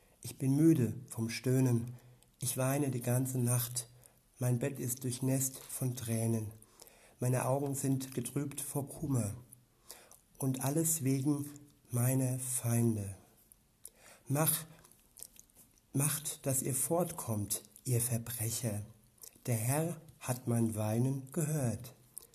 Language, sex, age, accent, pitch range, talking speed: German, male, 60-79, German, 115-135 Hz, 105 wpm